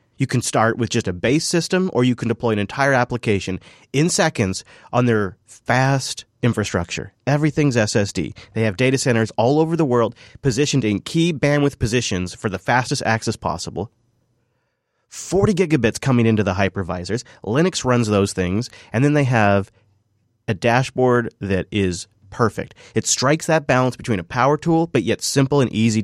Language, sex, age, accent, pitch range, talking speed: English, male, 30-49, American, 105-145 Hz, 170 wpm